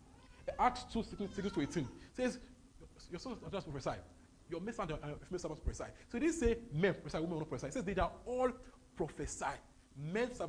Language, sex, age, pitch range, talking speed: English, male, 30-49, 145-215 Hz, 190 wpm